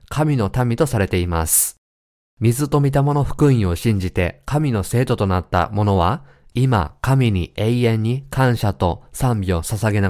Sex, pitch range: male, 90-120 Hz